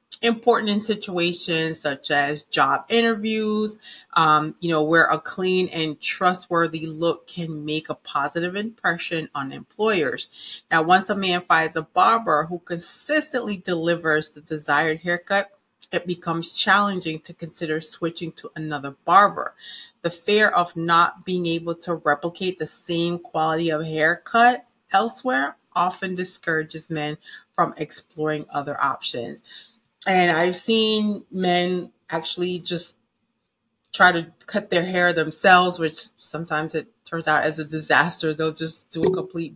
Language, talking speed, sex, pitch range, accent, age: English, 140 wpm, female, 155-180 Hz, American, 30-49